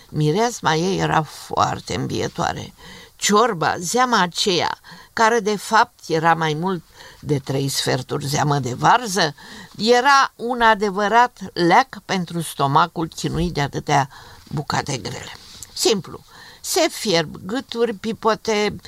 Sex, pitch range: female, 155-215 Hz